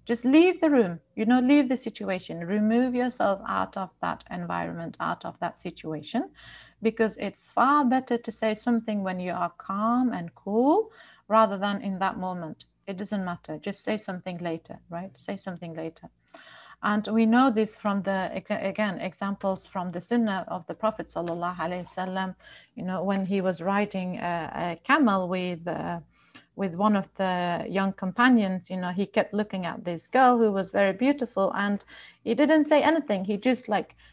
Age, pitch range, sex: 40-59, 190-230 Hz, female